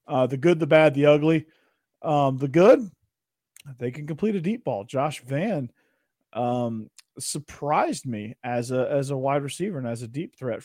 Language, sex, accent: English, male, American